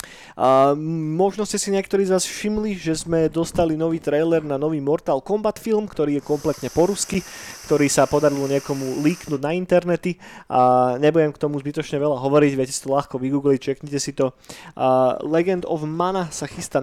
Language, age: Slovak, 20-39